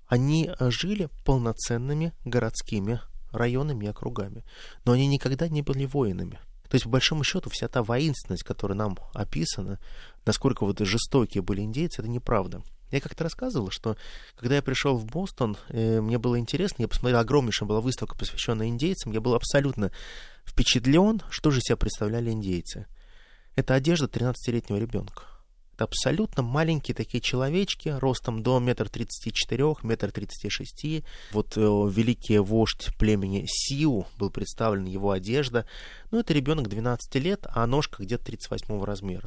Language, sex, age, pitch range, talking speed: Russian, male, 20-39, 105-135 Hz, 145 wpm